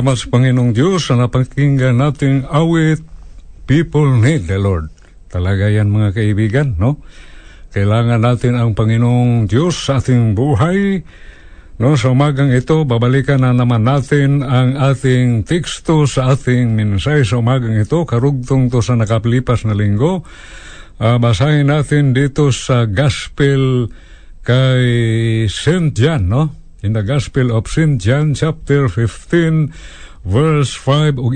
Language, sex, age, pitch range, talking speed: Filipino, male, 60-79, 105-140 Hz, 120 wpm